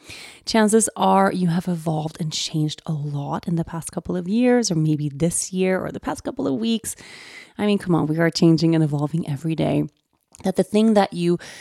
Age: 30-49